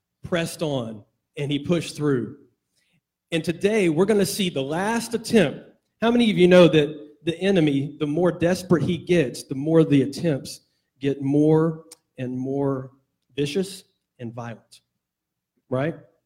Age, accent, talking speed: 40-59, American, 150 wpm